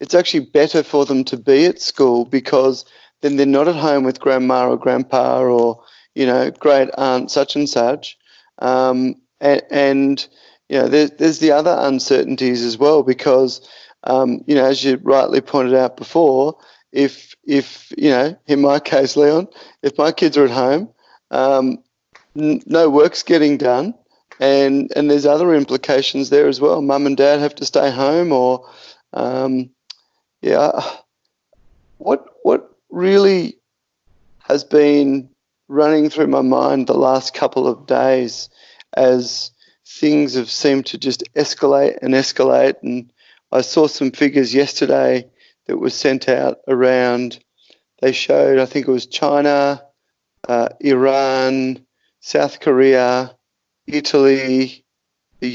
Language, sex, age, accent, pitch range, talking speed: English, male, 30-49, Australian, 130-145 Hz, 145 wpm